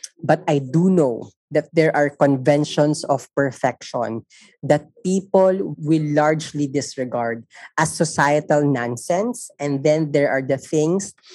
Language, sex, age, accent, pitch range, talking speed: Filipino, female, 20-39, native, 140-180 Hz, 125 wpm